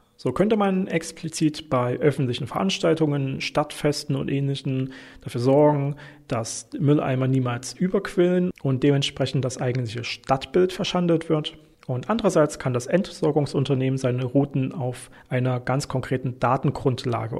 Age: 40-59